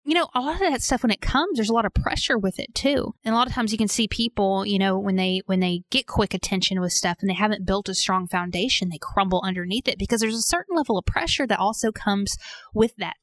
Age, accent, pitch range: 20-39, American, 190-240 Hz